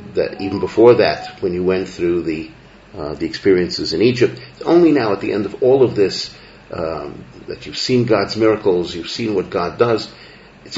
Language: English